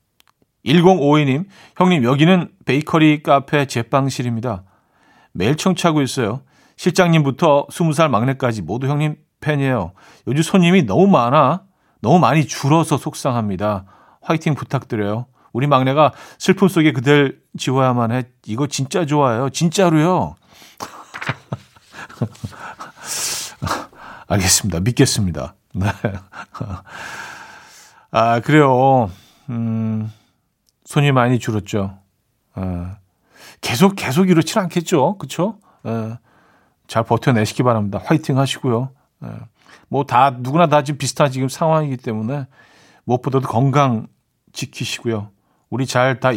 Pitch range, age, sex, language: 115-150 Hz, 50-69, male, Korean